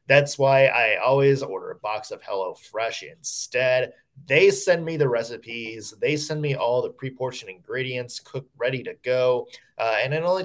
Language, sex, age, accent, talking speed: English, male, 20-39, American, 170 wpm